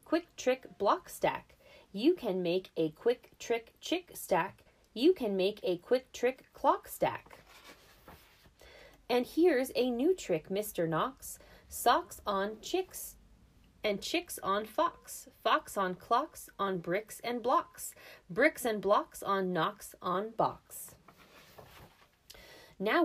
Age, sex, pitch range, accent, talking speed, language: 20-39, female, 185-295 Hz, American, 130 wpm, English